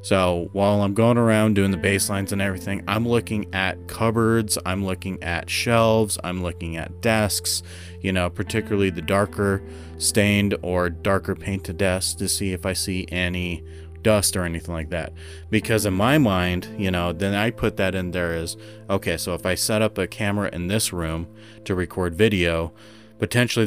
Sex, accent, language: male, American, English